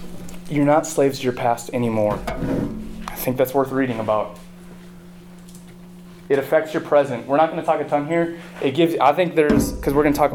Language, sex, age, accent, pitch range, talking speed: English, male, 20-39, American, 130-170 Hz, 205 wpm